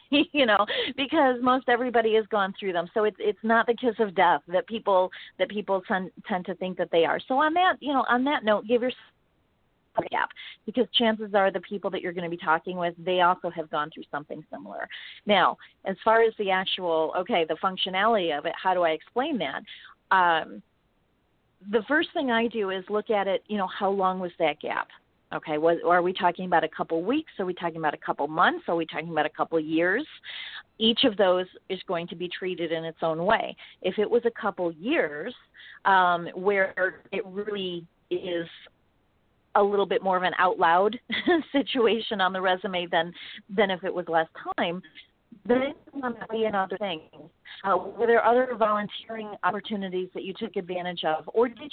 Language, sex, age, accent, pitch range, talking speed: English, female, 40-59, American, 175-230 Hz, 205 wpm